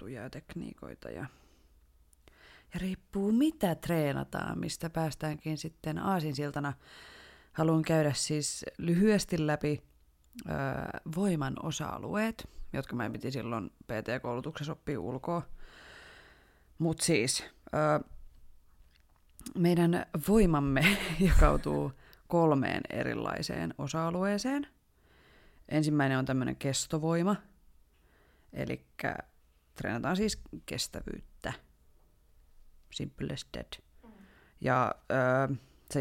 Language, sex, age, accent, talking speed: Finnish, female, 20-39, native, 80 wpm